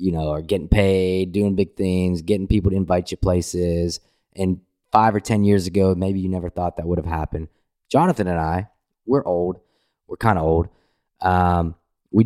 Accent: American